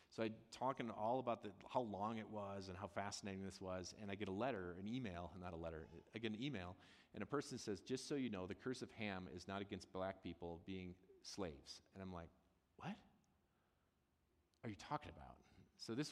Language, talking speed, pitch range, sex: English, 210 wpm, 85-105 Hz, male